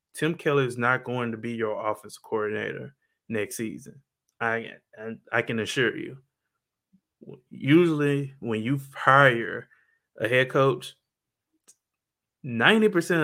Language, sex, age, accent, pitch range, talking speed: English, male, 20-39, American, 115-150 Hz, 115 wpm